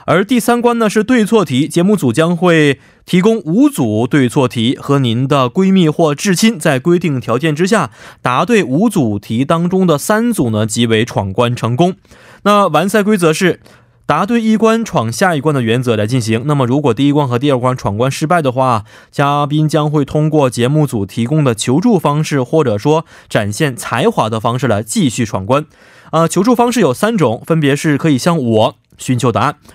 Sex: male